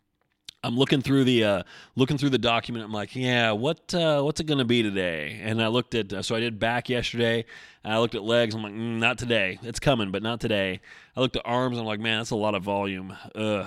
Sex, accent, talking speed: male, American, 260 wpm